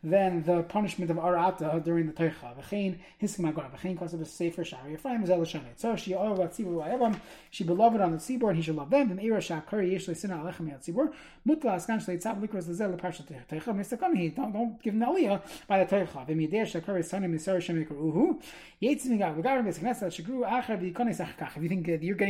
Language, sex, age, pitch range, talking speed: English, male, 30-49, 170-230 Hz, 90 wpm